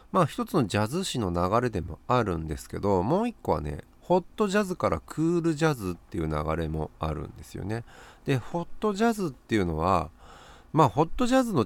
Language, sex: Japanese, male